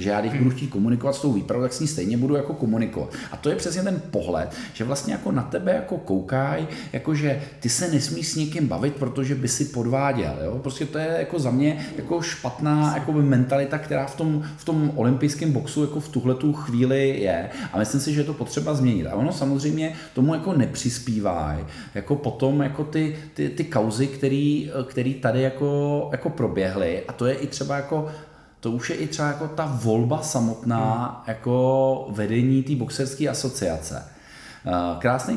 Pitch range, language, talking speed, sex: 115-150 Hz, Czech, 190 wpm, male